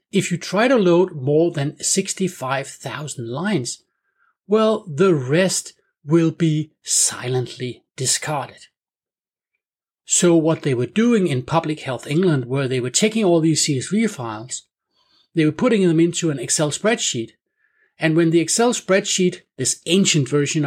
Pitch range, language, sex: 140-190 Hz, English, male